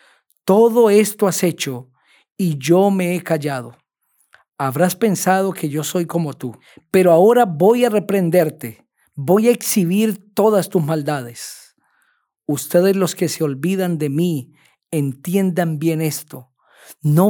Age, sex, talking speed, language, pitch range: 40-59, male, 130 wpm, Spanish, 150-190 Hz